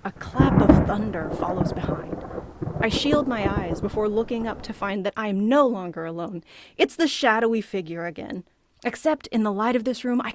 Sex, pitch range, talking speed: female, 200-255 Hz, 195 wpm